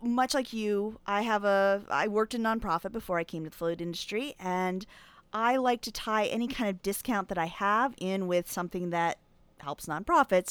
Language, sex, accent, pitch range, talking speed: English, female, American, 190-255 Hz, 200 wpm